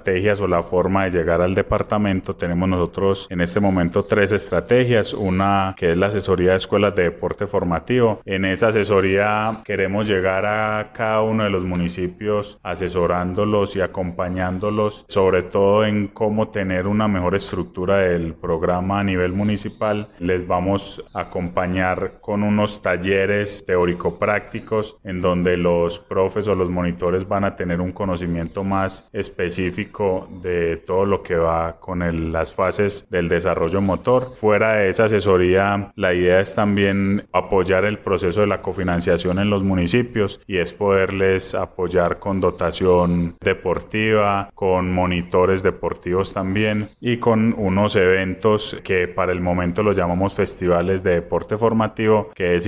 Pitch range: 90-105 Hz